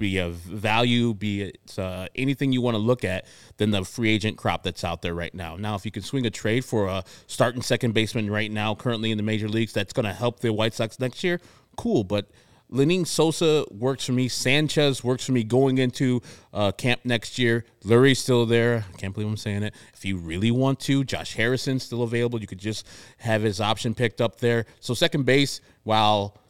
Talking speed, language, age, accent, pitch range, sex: 220 wpm, English, 30-49, American, 105-125 Hz, male